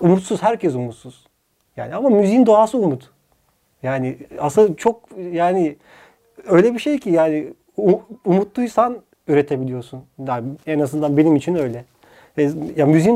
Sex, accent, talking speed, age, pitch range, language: male, native, 130 wpm, 40-59, 145-210 Hz, Turkish